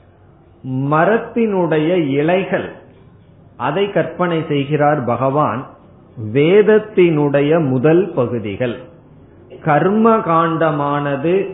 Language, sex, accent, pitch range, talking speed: Tamil, male, native, 125-160 Hz, 55 wpm